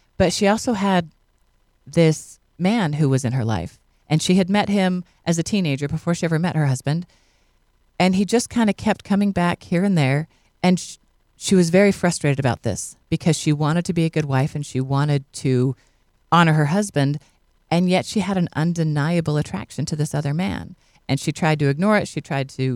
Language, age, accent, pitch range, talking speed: English, 40-59, American, 130-175 Hz, 210 wpm